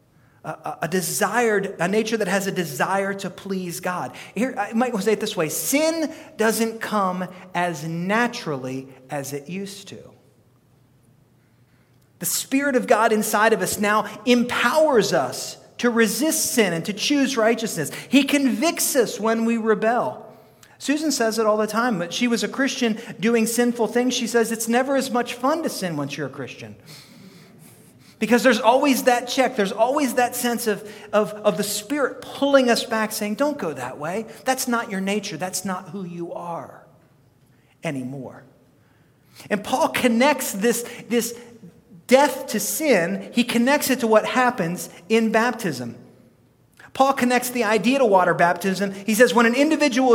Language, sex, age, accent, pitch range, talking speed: English, male, 30-49, American, 175-245 Hz, 165 wpm